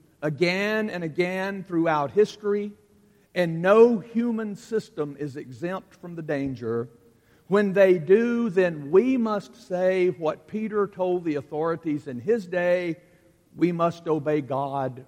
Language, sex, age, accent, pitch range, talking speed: English, male, 60-79, American, 140-185 Hz, 130 wpm